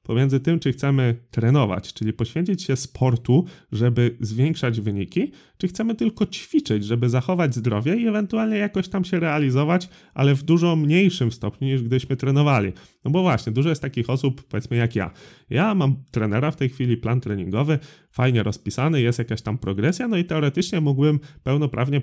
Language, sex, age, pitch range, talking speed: Polish, male, 30-49, 110-155 Hz, 170 wpm